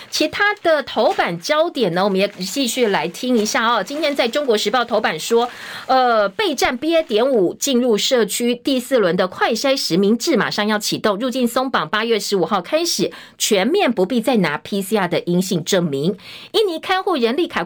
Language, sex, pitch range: Chinese, female, 200-270 Hz